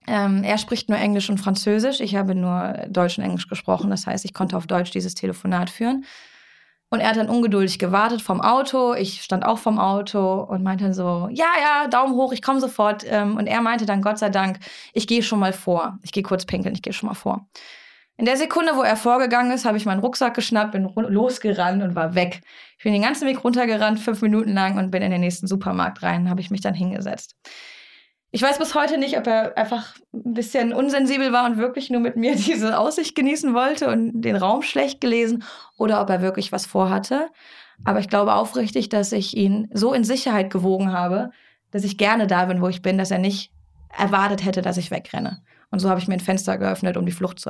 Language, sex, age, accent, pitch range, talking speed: German, female, 20-39, German, 190-245 Hz, 220 wpm